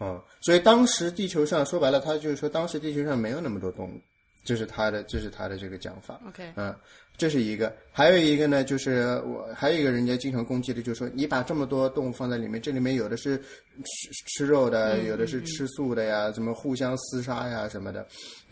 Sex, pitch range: male, 110-150 Hz